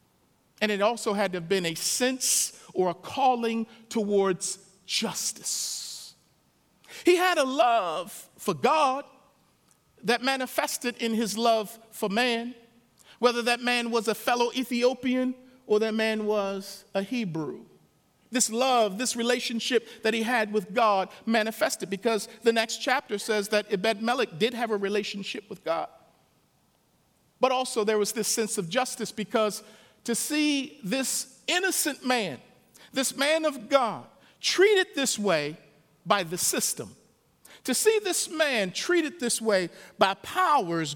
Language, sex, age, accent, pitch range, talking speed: English, male, 50-69, American, 205-255 Hz, 140 wpm